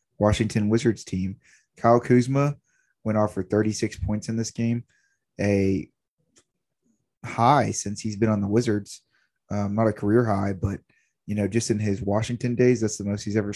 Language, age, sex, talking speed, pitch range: English, 20-39, male, 175 wpm, 100-115 Hz